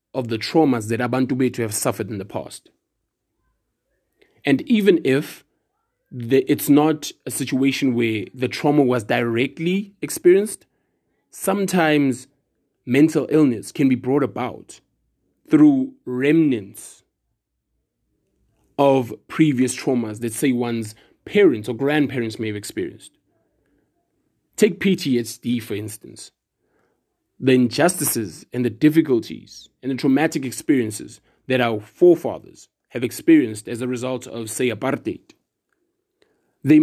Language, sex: English, male